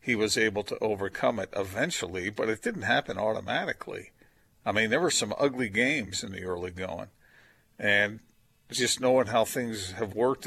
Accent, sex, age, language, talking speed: American, male, 50-69, English, 170 wpm